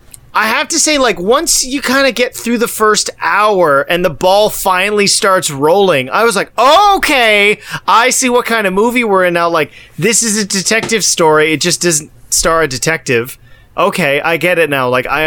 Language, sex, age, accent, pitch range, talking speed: English, male, 30-49, American, 125-210 Hz, 205 wpm